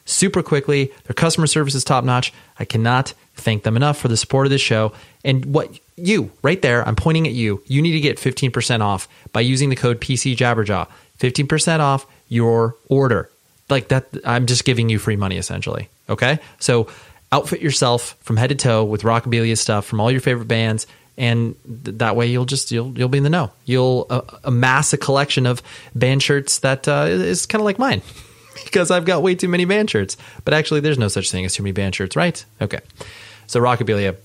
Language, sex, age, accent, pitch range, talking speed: English, male, 30-49, American, 110-140 Hz, 210 wpm